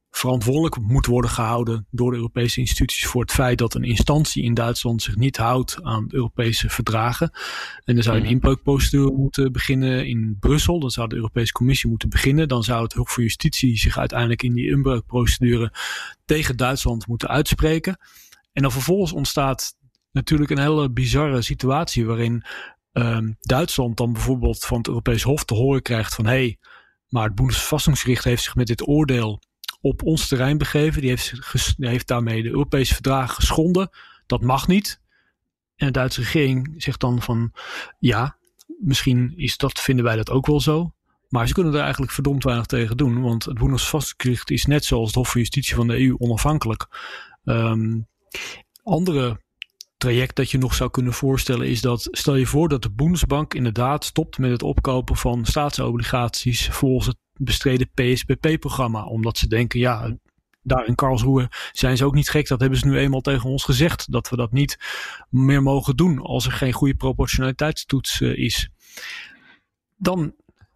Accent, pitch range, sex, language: Dutch, 120-140 Hz, male, English